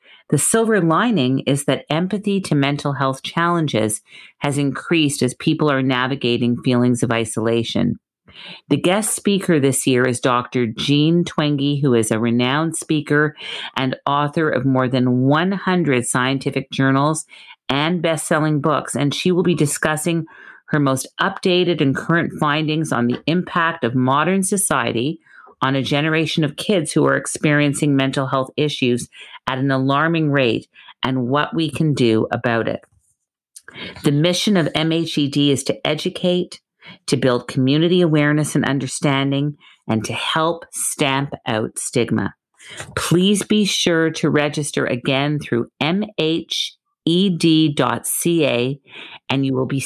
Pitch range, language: 130-165 Hz, English